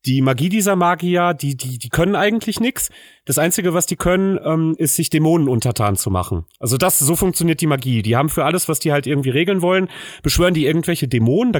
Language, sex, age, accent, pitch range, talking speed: German, male, 30-49, German, 140-185 Hz, 220 wpm